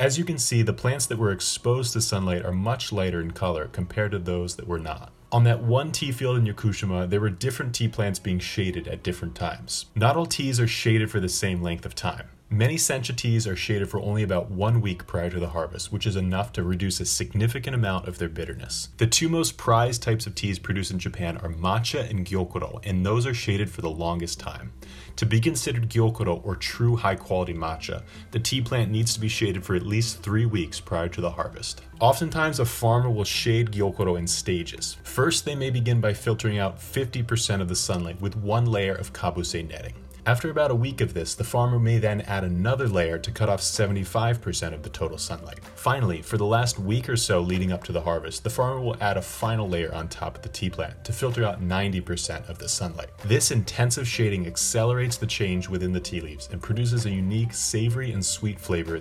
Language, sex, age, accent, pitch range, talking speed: English, male, 30-49, American, 90-115 Hz, 220 wpm